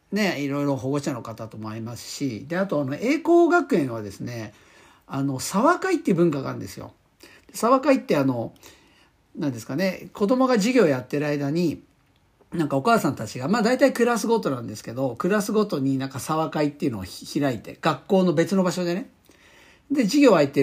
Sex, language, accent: male, Japanese, native